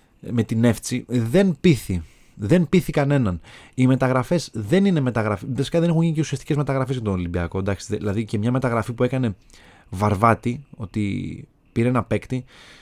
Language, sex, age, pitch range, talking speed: Greek, male, 30-49, 105-145 Hz, 160 wpm